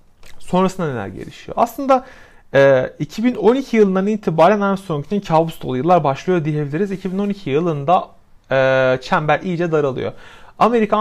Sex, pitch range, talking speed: male, 140-200 Hz, 110 wpm